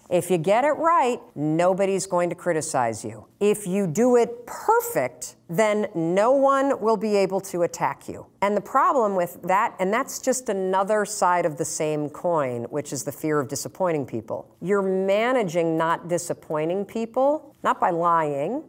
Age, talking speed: 50-69, 170 wpm